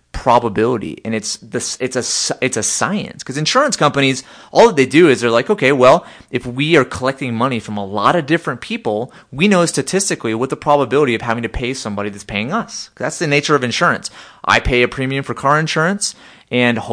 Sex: male